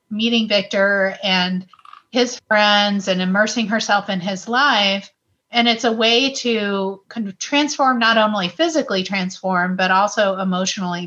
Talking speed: 140 wpm